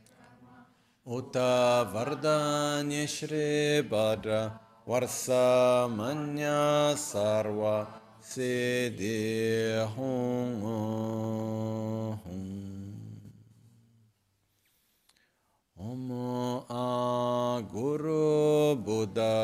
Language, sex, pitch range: Italian, male, 110-125 Hz